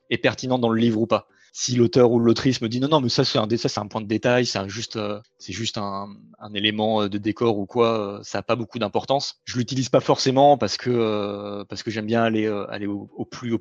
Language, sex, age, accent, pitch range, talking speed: French, male, 20-39, French, 105-125 Hz, 280 wpm